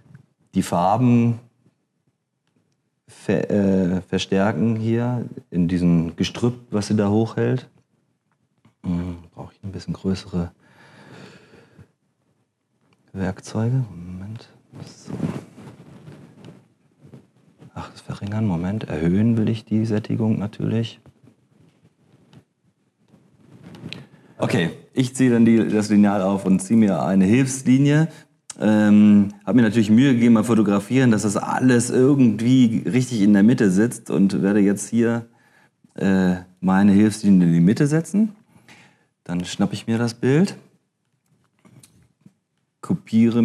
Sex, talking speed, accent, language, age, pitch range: male, 110 wpm, German, German, 40-59, 95-125 Hz